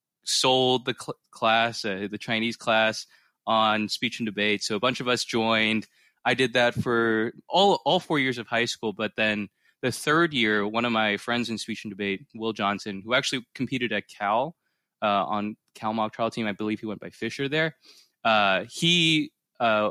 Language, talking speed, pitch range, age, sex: English, 195 wpm, 110-135 Hz, 20-39, male